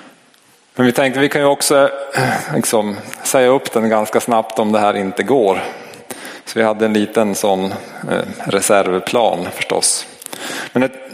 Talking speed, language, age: 145 wpm, Swedish, 30-49